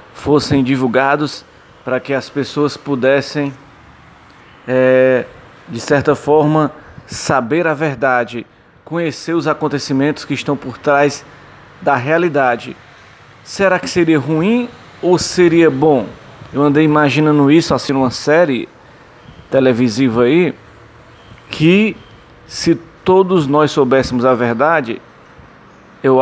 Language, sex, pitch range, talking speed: English, male, 135-165 Hz, 110 wpm